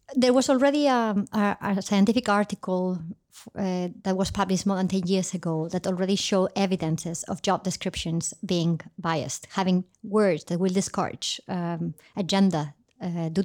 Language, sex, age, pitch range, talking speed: Danish, male, 30-49, 185-215 Hz, 150 wpm